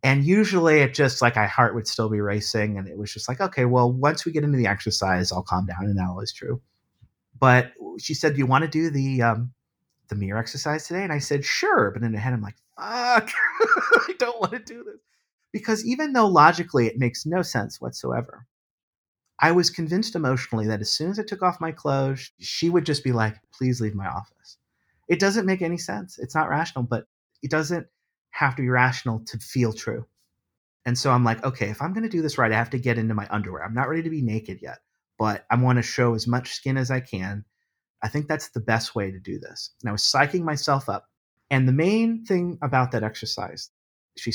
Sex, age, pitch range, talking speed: male, 30-49, 110-160 Hz, 230 wpm